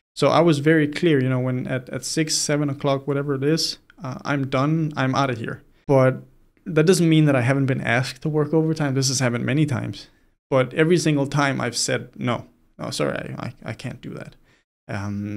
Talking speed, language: 220 wpm, English